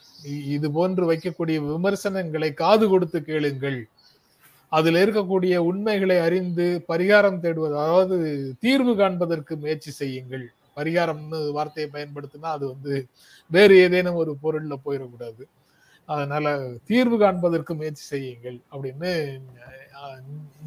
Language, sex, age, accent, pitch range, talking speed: Tamil, male, 30-49, native, 145-190 Hz, 100 wpm